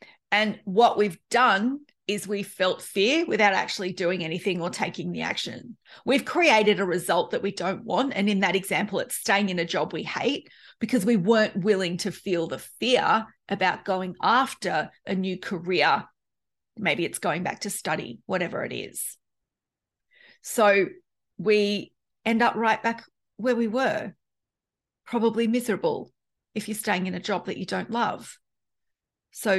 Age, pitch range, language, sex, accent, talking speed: 40-59, 190-235 Hz, English, female, Australian, 160 wpm